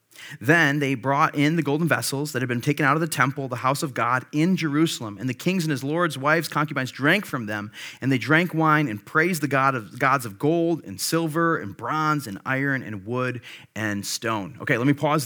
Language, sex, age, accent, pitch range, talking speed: English, male, 30-49, American, 130-155 Hz, 220 wpm